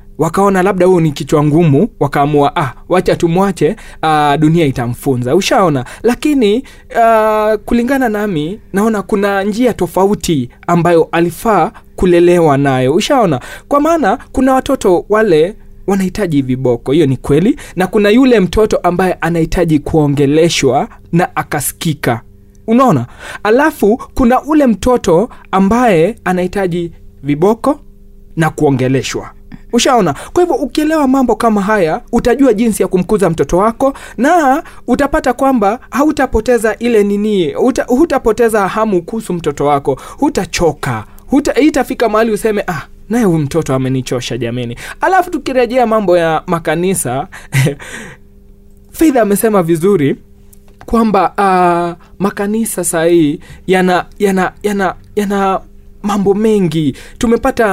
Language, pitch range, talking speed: Swahili, 165-230 Hz, 115 wpm